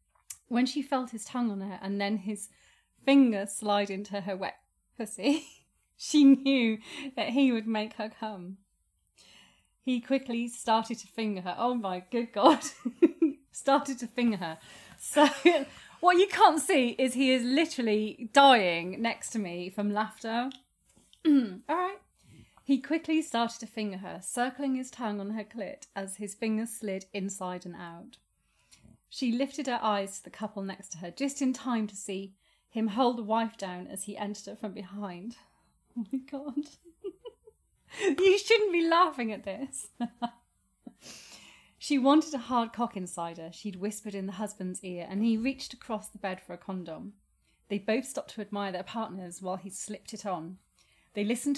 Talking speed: 170 wpm